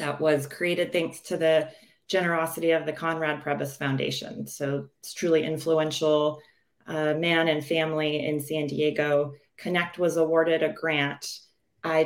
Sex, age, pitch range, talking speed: female, 30-49, 155-175 Hz, 145 wpm